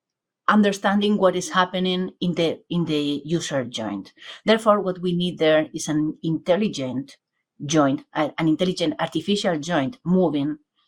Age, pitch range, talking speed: 30-49, 155-200 Hz, 130 wpm